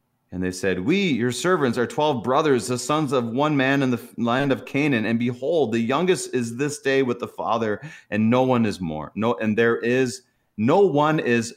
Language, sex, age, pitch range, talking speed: English, male, 30-49, 90-120 Hz, 215 wpm